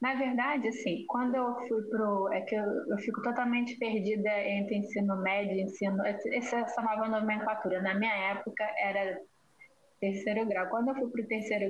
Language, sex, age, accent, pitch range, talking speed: Portuguese, female, 10-29, Brazilian, 205-250 Hz, 180 wpm